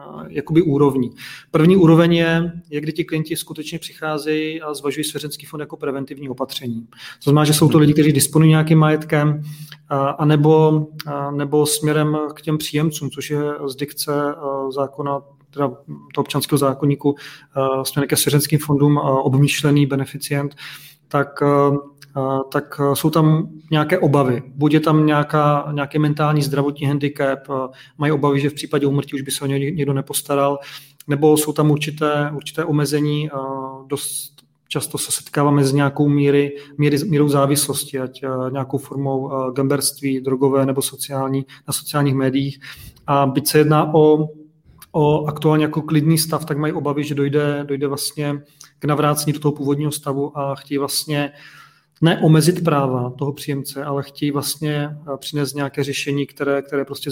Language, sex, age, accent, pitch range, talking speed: Czech, male, 30-49, native, 140-150 Hz, 160 wpm